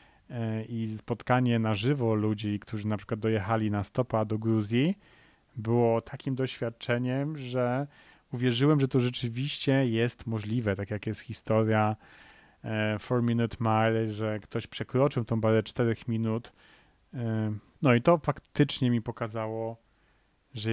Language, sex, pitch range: Polish, male, 110-125 Hz